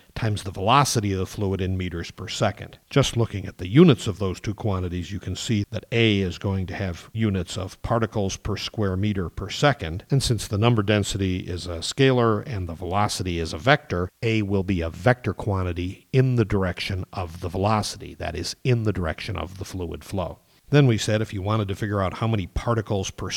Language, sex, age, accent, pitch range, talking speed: English, male, 50-69, American, 90-115 Hz, 215 wpm